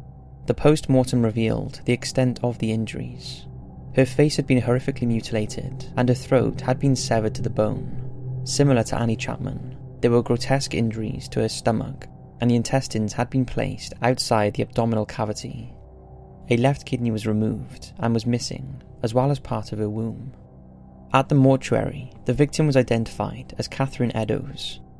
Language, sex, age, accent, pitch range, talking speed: English, male, 20-39, British, 110-130 Hz, 165 wpm